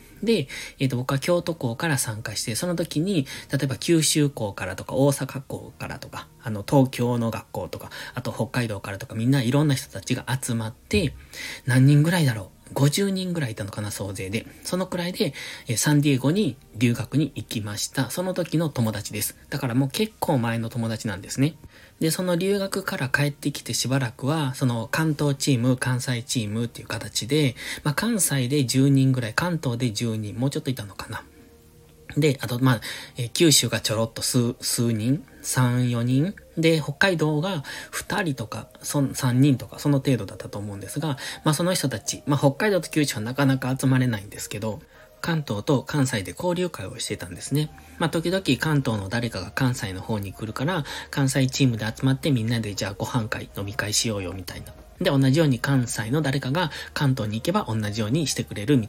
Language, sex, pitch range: Japanese, male, 110-145 Hz